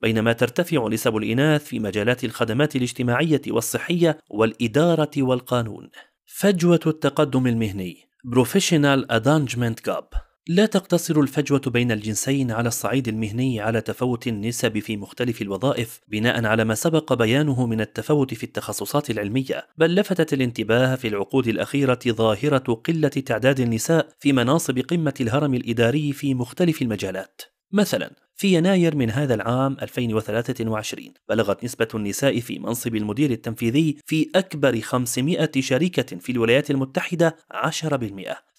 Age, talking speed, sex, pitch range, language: 30-49, 120 wpm, male, 115-150 Hz, Arabic